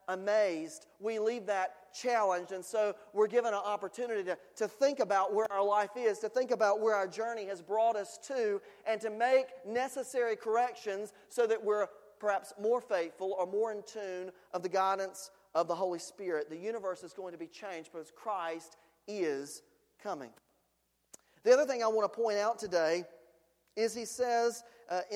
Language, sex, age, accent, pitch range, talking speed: English, male, 40-59, American, 195-235 Hz, 180 wpm